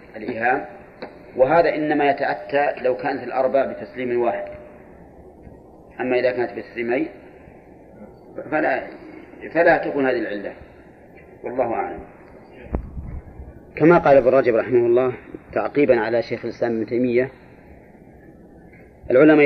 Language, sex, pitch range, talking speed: Arabic, male, 120-140 Hz, 100 wpm